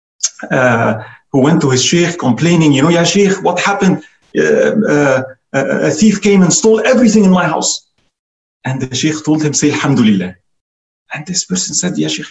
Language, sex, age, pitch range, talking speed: English, male, 40-59, 140-185 Hz, 180 wpm